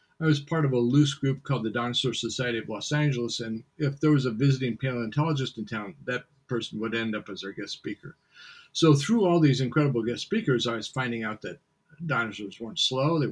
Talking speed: 215 wpm